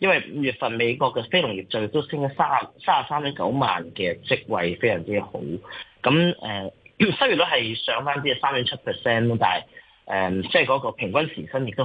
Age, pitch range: 30-49, 110-150 Hz